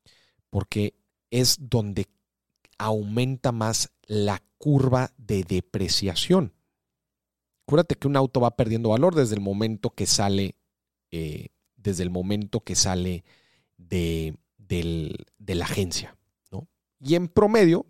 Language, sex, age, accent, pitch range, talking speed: Spanish, male, 40-59, Mexican, 95-130 Hz, 120 wpm